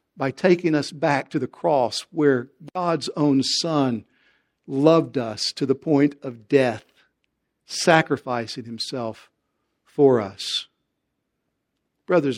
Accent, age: American, 60-79